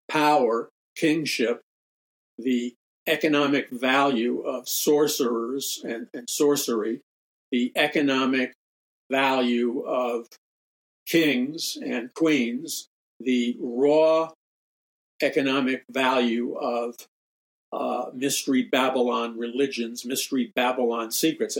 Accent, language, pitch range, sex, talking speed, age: American, English, 125-155 Hz, male, 80 wpm, 50-69